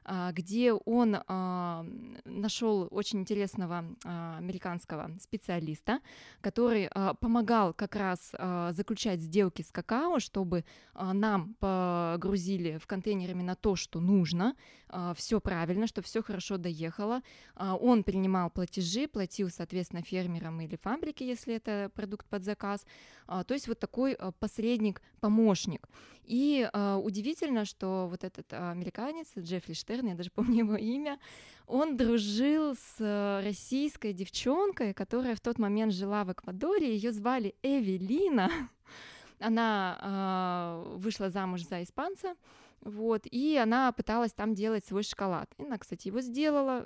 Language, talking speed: Russian, 120 wpm